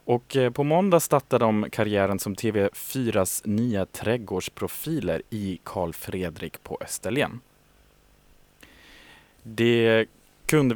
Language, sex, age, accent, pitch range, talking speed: Swedish, male, 20-39, Norwegian, 95-125 Hz, 95 wpm